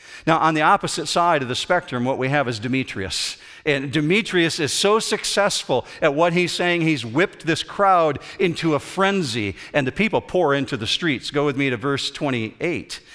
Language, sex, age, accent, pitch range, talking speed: English, male, 50-69, American, 125-165 Hz, 190 wpm